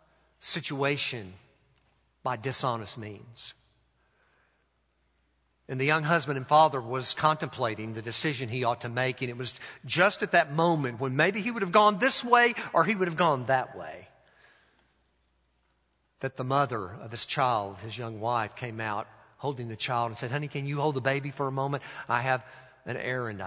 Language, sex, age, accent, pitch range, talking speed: English, male, 50-69, American, 105-140 Hz, 175 wpm